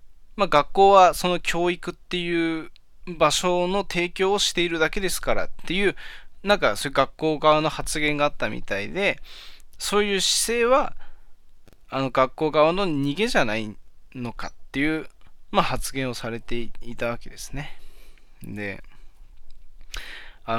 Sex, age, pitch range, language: male, 20-39, 115-175 Hz, Japanese